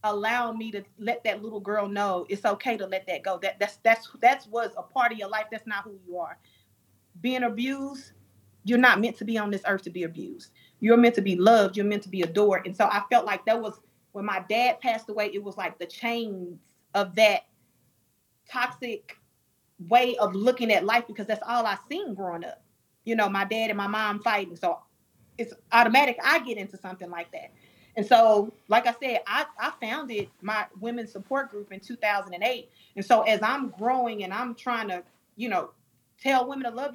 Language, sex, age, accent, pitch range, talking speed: English, female, 30-49, American, 200-245 Hz, 210 wpm